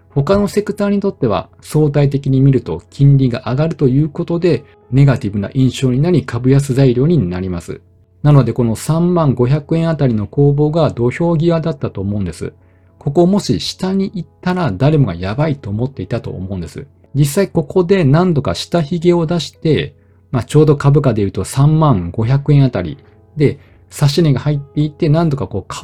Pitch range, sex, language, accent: 105-150 Hz, male, Japanese, native